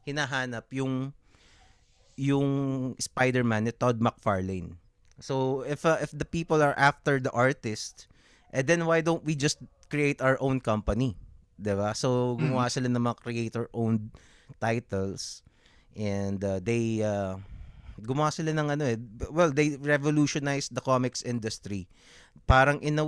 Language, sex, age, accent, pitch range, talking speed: English, male, 20-39, Filipino, 100-130 Hz, 140 wpm